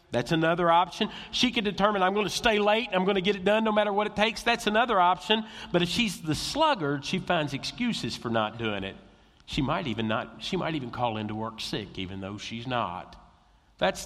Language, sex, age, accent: English, male, 50-69, American